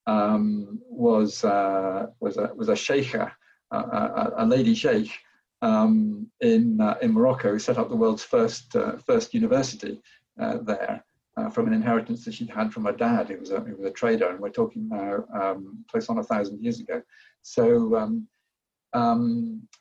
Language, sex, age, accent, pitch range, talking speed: English, male, 50-69, British, 215-235 Hz, 180 wpm